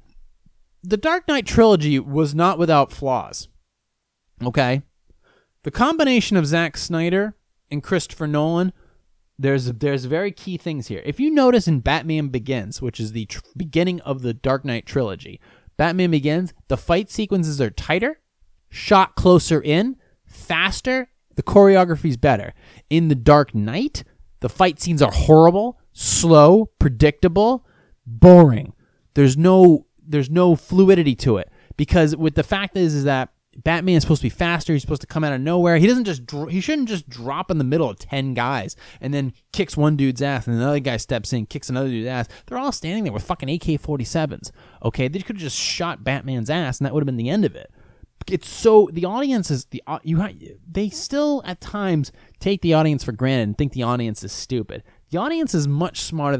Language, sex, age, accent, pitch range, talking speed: English, male, 30-49, American, 130-180 Hz, 185 wpm